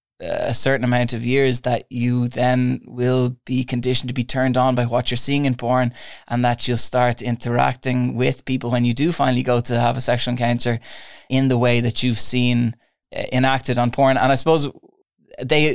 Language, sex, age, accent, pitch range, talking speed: English, male, 20-39, Irish, 120-130 Hz, 195 wpm